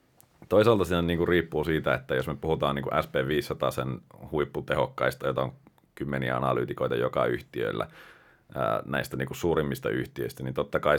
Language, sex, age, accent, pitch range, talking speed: Finnish, male, 30-49, native, 70-85 Hz, 130 wpm